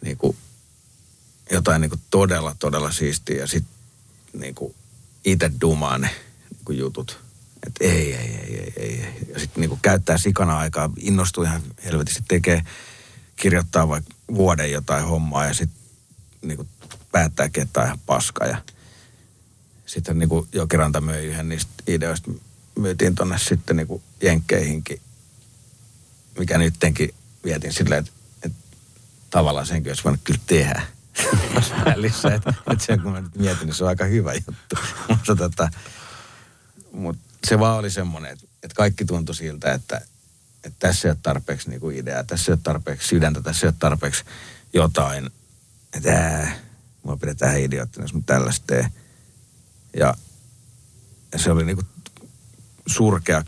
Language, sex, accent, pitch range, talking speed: Finnish, male, native, 80-110 Hz, 135 wpm